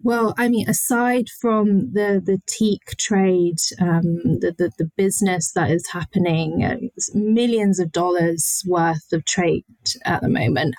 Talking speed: 155 wpm